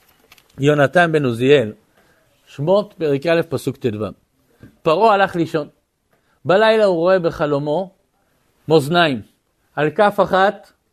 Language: Hebrew